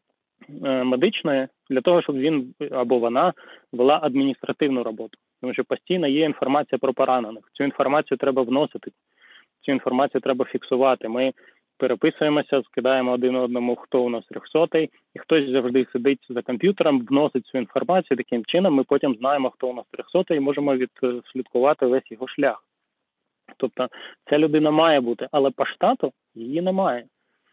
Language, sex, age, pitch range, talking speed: Ukrainian, male, 20-39, 125-150 Hz, 150 wpm